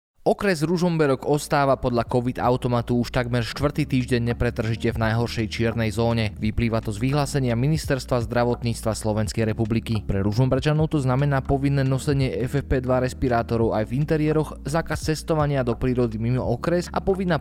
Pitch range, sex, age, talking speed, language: 110-140 Hz, male, 20-39, 140 wpm, Slovak